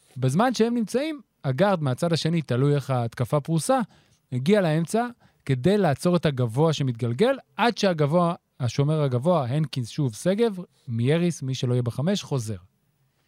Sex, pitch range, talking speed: male, 130-170 Hz, 135 wpm